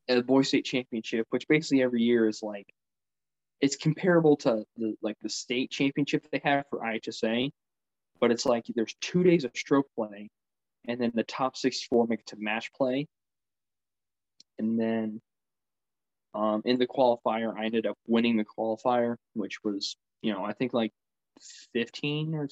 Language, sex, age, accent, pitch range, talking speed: English, male, 20-39, American, 105-125 Hz, 165 wpm